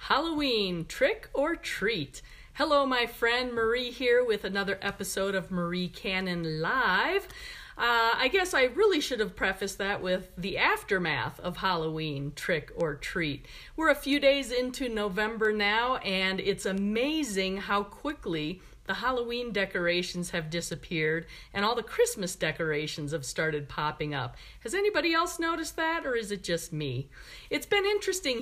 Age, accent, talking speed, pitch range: 50-69, American, 150 wpm, 180-235 Hz